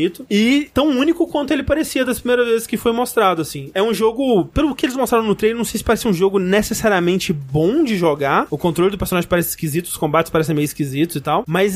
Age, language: 20-39, Portuguese